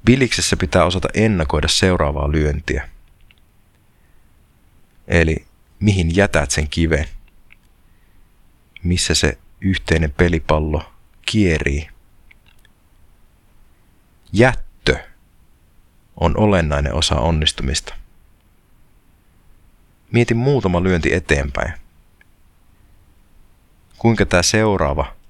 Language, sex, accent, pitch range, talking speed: Finnish, male, native, 75-95 Hz, 65 wpm